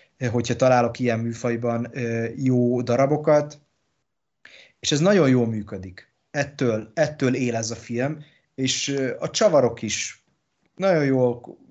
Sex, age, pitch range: male, 20-39, 115-145 Hz